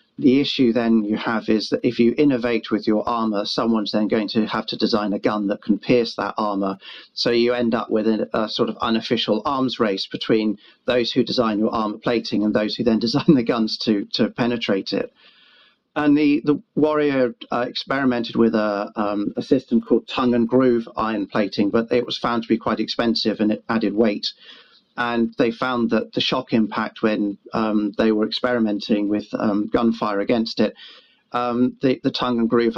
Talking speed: 200 wpm